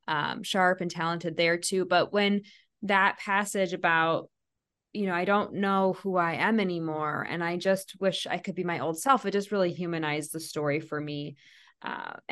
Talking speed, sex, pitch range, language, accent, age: 190 wpm, female, 165-195 Hz, English, American, 20-39